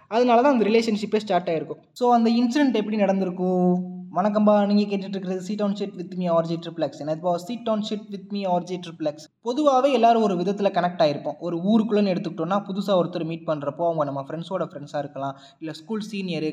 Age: 20-39